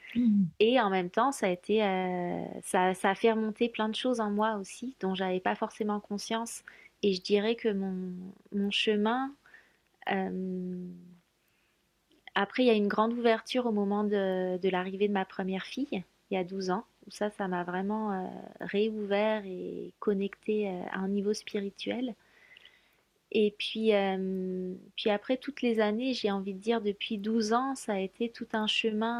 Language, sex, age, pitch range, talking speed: French, female, 30-49, 190-220 Hz, 180 wpm